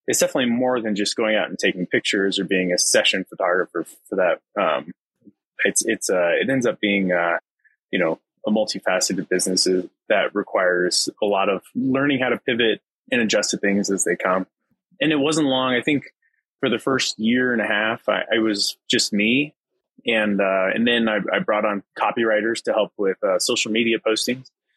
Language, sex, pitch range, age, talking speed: English, male, 100-125 Hz, 20-39, 195 wpm